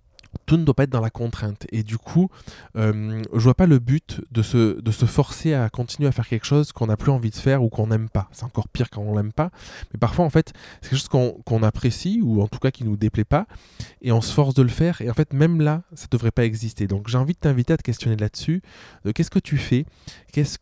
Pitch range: 110-140 Hz